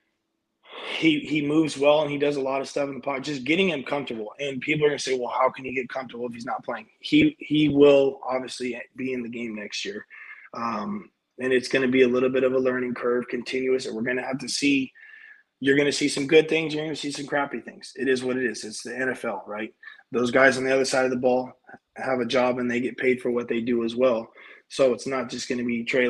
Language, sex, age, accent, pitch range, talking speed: English, male, 20-39, American, 125-145 Hz, 275 wpm